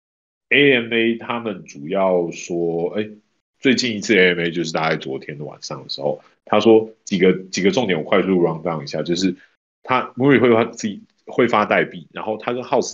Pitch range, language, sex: 80-105 Hz, Chinese, male